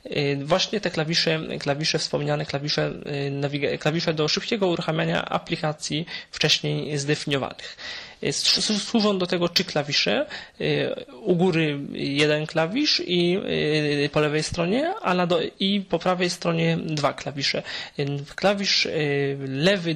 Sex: male